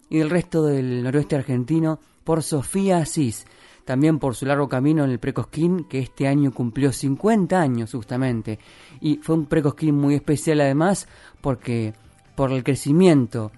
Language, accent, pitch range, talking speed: Spanish, Argentinian, 130-155 Hz, 155 wpm